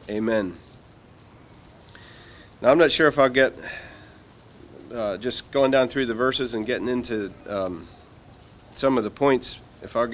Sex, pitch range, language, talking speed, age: male, 110-135 Hz, English, 150 wpm, 40-59